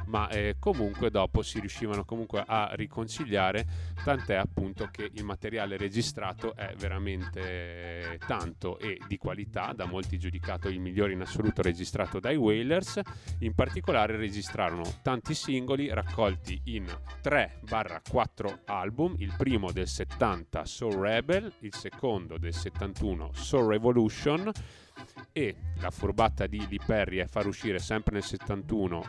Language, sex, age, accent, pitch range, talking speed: Italian, male, 30-49, native, 90-110 Hz, 130 wpm